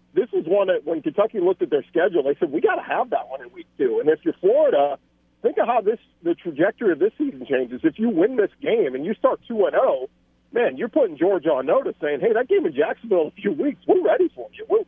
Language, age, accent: English, 50-69, American